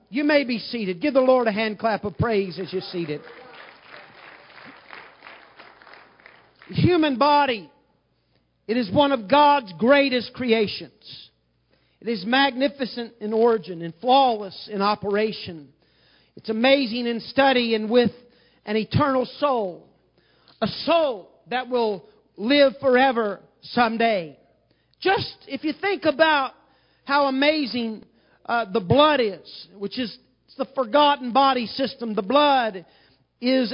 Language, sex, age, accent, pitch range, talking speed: English, male, 50-69, American, 215-275 Hz, 130 wpm